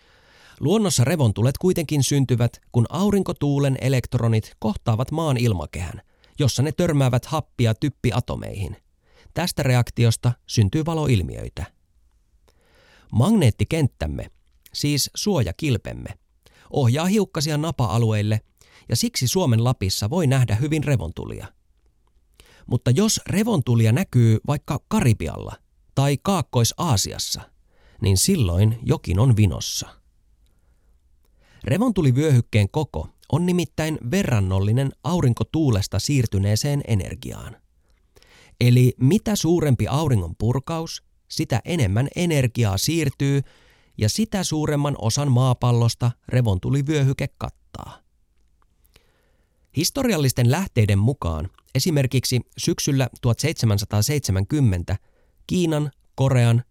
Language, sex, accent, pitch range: Finnish, male, native, 105-145 Hz